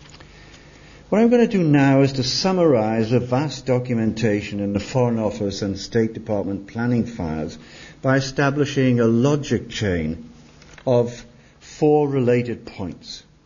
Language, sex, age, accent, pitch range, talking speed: English, male, 50-69, British, 105-150 Hz, 135 wpm